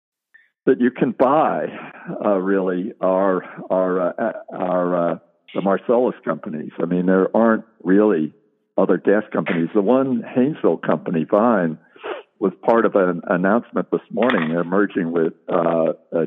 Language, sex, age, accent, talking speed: English, male, 60-79, American, 135 wpm